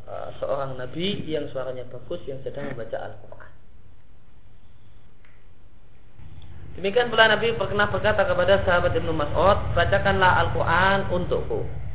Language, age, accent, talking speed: Indonesian, 30-49, native, 105 wpm